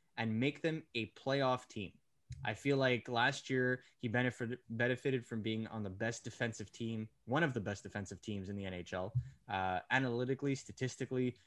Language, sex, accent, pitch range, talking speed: English, male, American, 110-135 Hz, 175 wpm